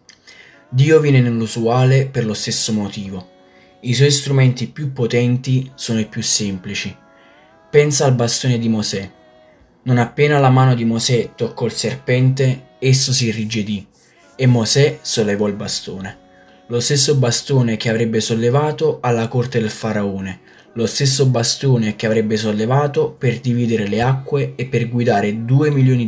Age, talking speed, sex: 20-39, 145 wpm, male